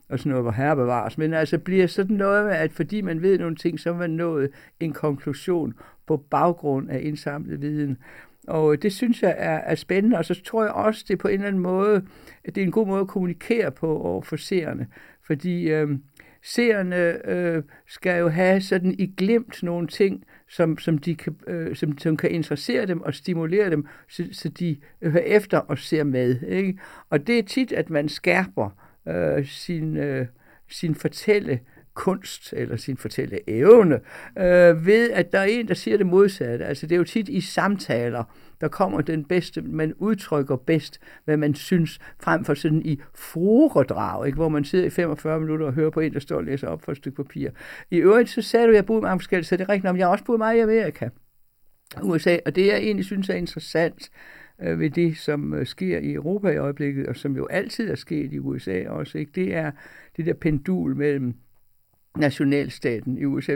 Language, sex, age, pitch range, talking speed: Danish, male, 60-79, 145-185 Hz, 200 wpm